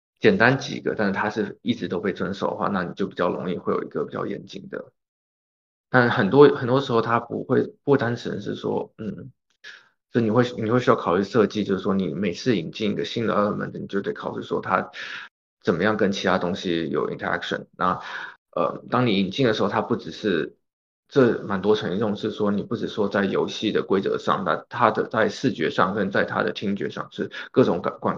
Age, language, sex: 20-39, Chinese, male